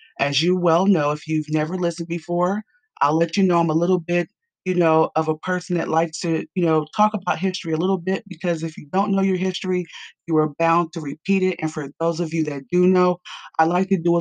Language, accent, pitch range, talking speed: English, American, 155-185 Hz, 250 wpm